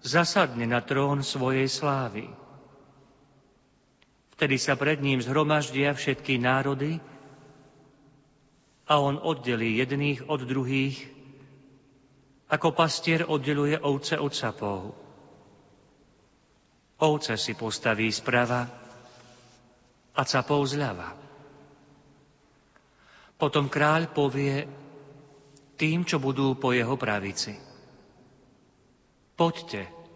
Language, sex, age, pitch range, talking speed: Slovak, male, 40-59, 120-145 Hz, 80 wpm